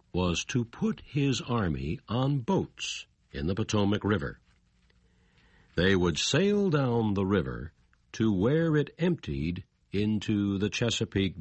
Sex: male